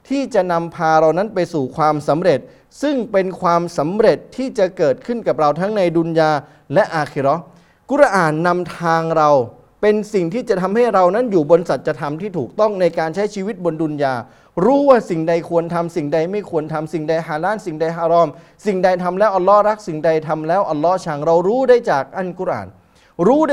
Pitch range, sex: 150-190 Hz, male